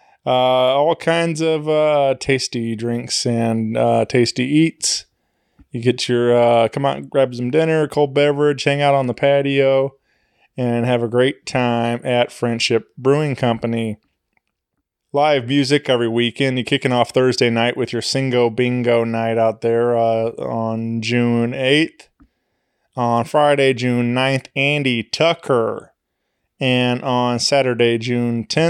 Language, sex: English, male